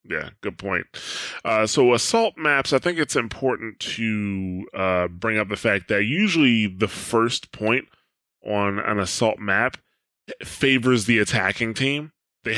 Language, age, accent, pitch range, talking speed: English, 20-39, American, 105-125 Hz, 150 wpm